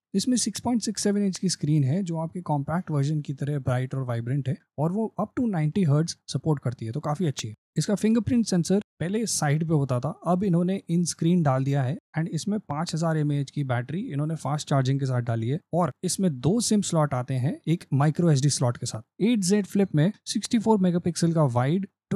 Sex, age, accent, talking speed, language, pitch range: male, 20-39, native, 210 wpm, Hindi, 140-190 Hz